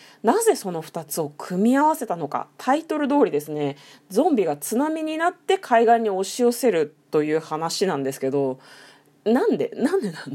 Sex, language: female, Japanese